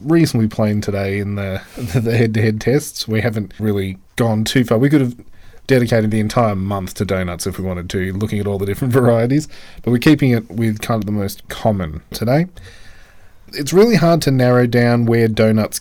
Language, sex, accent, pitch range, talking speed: English, male, Australian, 105-135 Hz, 195 wpm